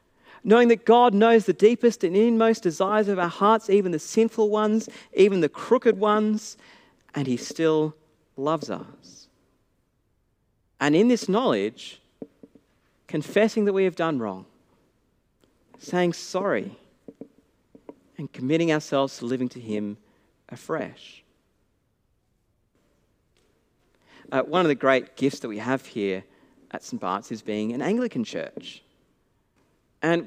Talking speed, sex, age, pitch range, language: 125 wpm, male, 40-59, 155-225 Hz, English